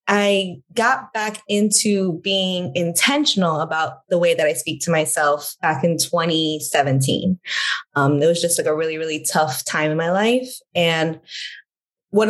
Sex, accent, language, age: female, American, English, 20-39